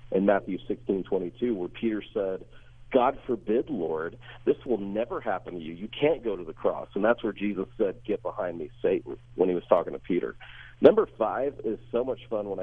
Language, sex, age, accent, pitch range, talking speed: English, male, 40-59, American, 95-120 Hz, 205 wpm